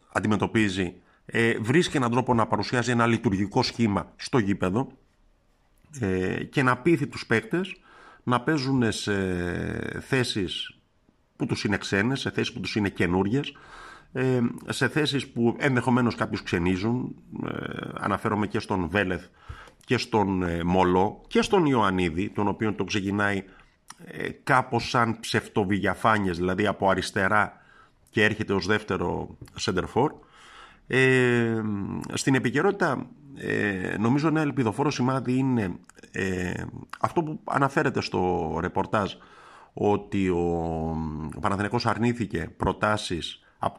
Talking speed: 110 wpm